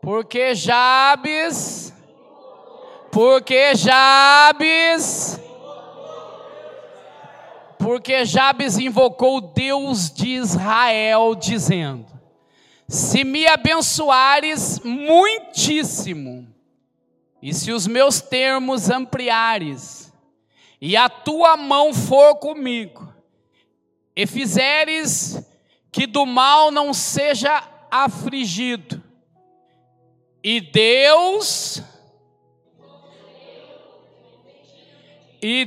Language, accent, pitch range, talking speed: Portuguese, Brazilian, 195-265 Hz, 65 wpm